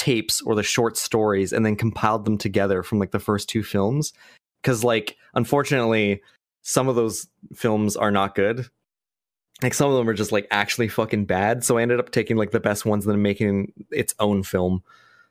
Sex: male